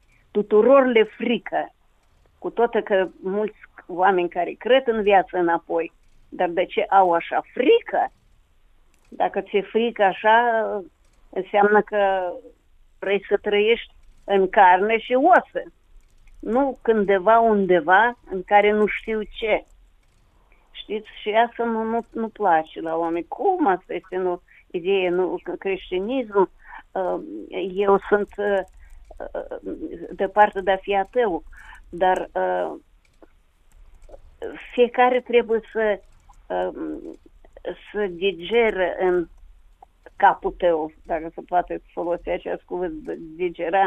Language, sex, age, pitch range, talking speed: Romanian, female, 50-69, 180-235 Hz, 110 wpm